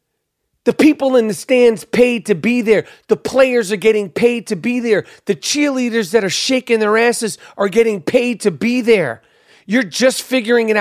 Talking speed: 190 wpm